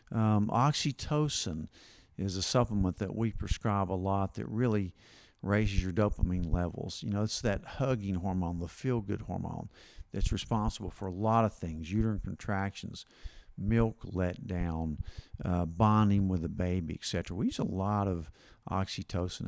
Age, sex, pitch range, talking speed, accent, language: 50-69, male, 90-115 Hz, 150 wpm, American, English